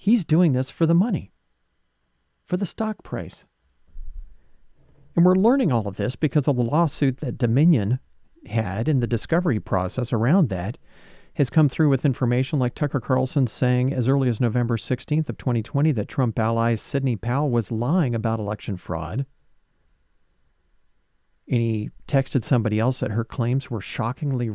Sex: male